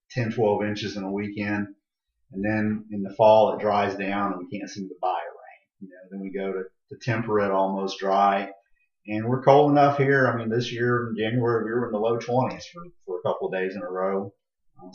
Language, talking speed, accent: English, 235 wpm, American